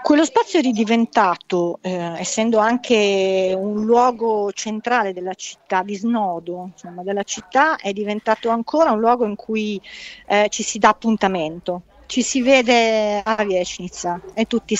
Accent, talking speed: native, 140 wpm